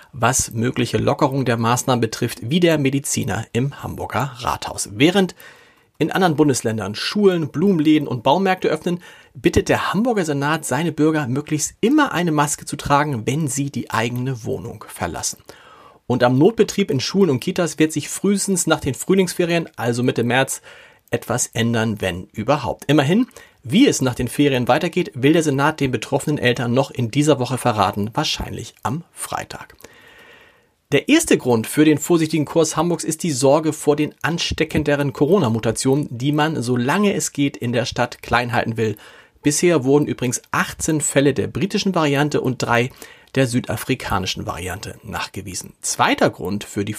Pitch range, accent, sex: 120-165 Hz, German, male